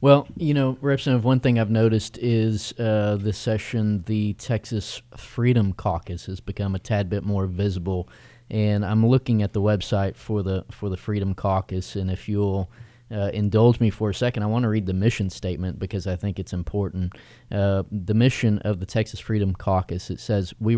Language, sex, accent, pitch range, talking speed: English, male, American, 95-115 Hz, 190 wpm